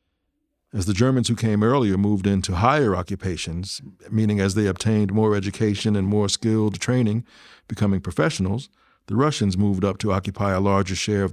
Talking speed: 170 wpm